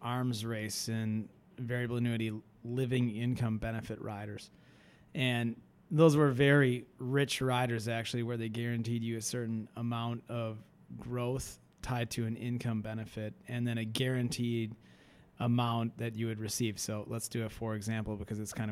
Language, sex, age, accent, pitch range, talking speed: English, male, 30-49, American, 110-120 Hz, 155 wpm